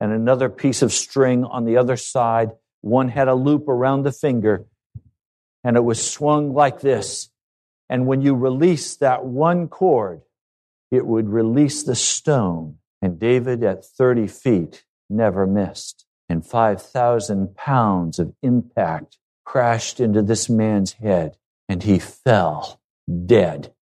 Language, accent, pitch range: English, American, 100-125 Hz